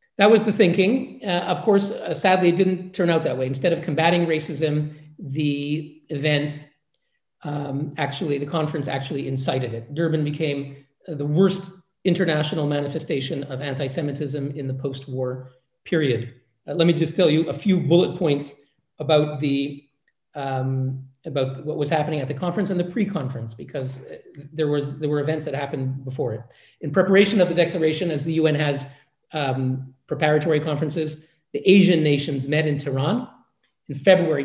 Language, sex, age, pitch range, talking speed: English, male, 40-59, 140-175 Hz, 165 wpm